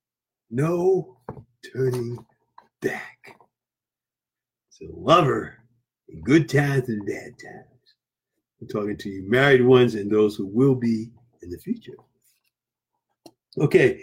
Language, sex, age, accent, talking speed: English, male, 50-69, American, 115 wpm